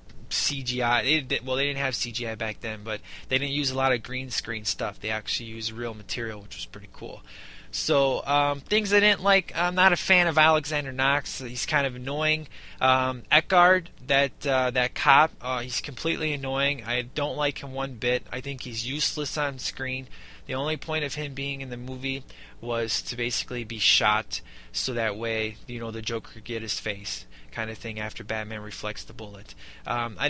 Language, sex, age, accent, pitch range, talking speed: English, male, 20-39, American, 120-145 Hz, 200 wpm